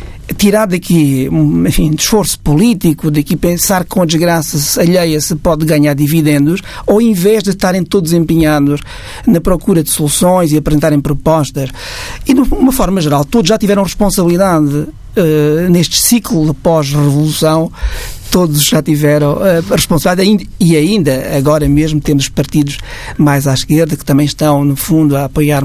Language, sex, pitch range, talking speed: Portuguese, male, 140-175 Hz, 155 wpm